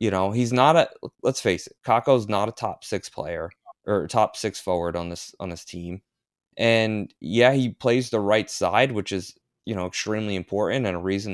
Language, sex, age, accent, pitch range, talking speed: English, male, 20-39, American, 95-120 Hz, 205 wpm